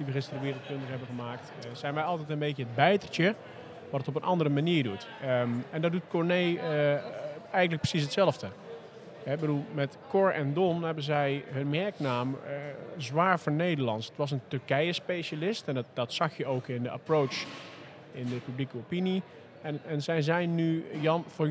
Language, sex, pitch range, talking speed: Dutch, male, 135-165 Hz, 195 wpm